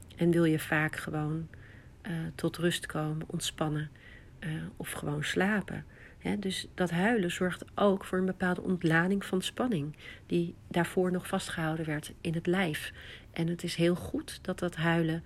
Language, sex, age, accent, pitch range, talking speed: Dutch, female, 40-59, Dutch, 160-185 Hz, 160 wpm